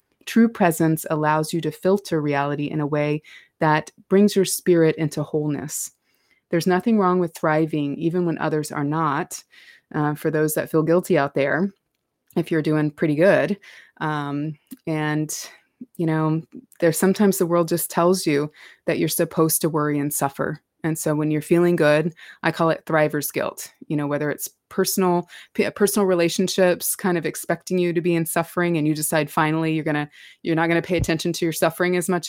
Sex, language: female, English